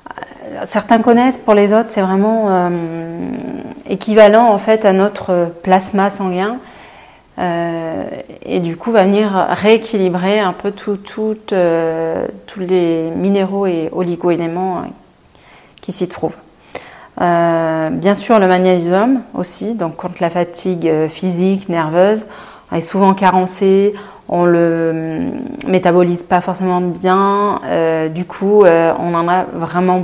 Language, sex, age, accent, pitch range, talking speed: French, female, 30-49, French, 170-200 Hz, 125 wpm